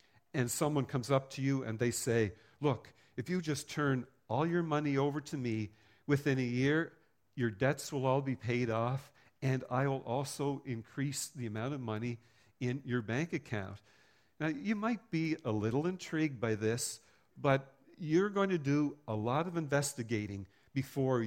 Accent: American